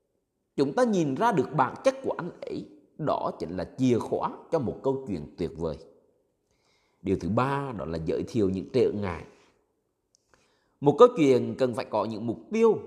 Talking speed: 185 wpm